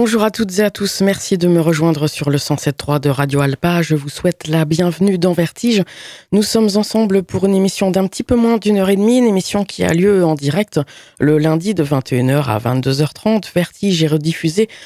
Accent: French